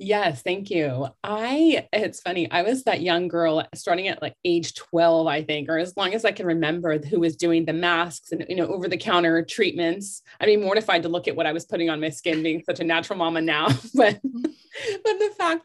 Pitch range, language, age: 160-210 Hz, English, 30-49